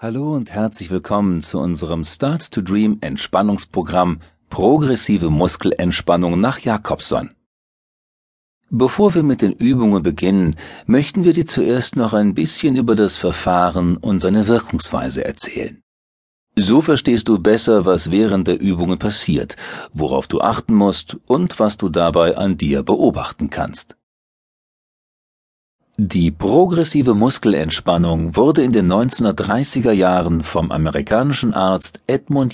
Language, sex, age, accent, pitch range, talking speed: German, male, 40-59, German, 90-120 Hz, 120 wpm